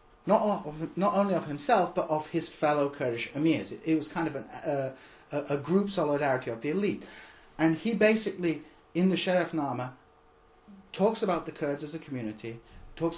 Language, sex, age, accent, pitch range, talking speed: English, male, 30-49, British, 135-170 Hz, 185 wpm